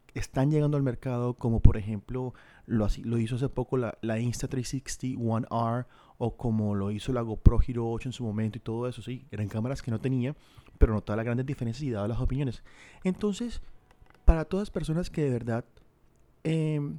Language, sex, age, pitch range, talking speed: Spanish, male, 30-49, 120-150 Hz, 195 wpm